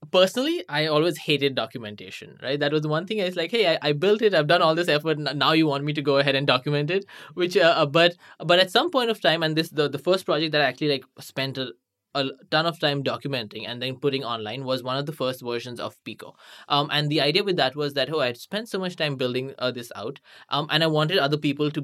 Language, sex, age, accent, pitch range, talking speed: English, male, 20-39, Indian, 130-160 Hz, 265 wpm